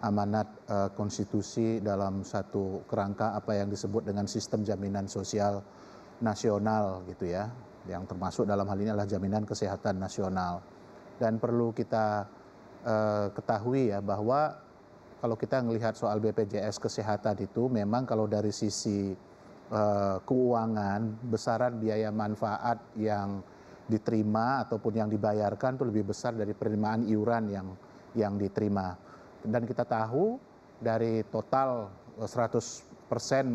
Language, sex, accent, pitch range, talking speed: English, male, Indonesian, 105-115 Hz, 120 wpm